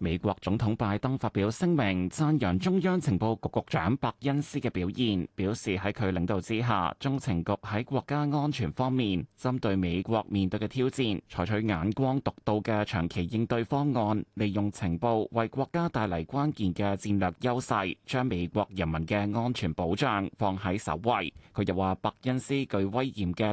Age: 20-39